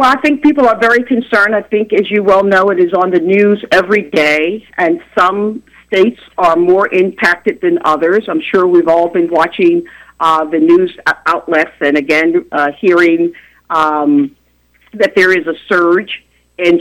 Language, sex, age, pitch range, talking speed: Arabic, female, 50-69, 155-205 Hz, 175 wpm